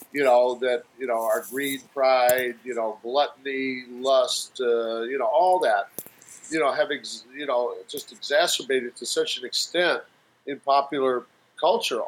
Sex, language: male, English